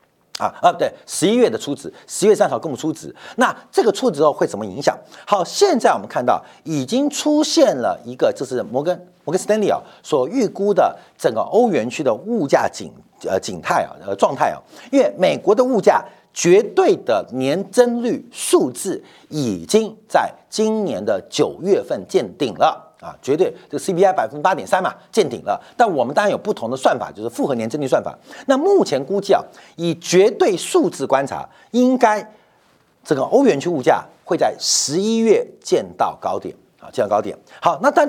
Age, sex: 50-69, male